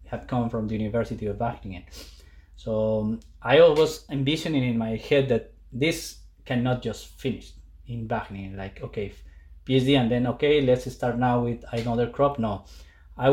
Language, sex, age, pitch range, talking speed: English, male, 20-39, 100-125 Hz, 160 wpm